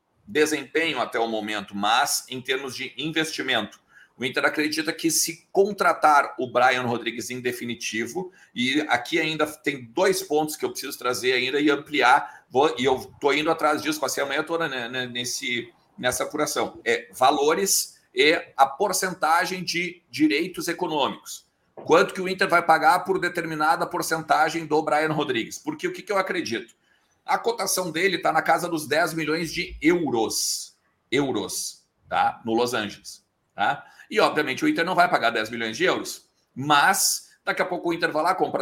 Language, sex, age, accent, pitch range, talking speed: Portuguese, male, 50-69, Brazilian, 145-180 Hz, 165 wpm